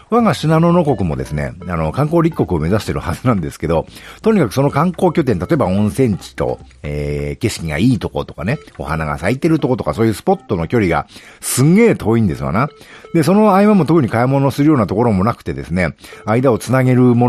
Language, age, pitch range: Japanese, 50-69, 100-165 Hz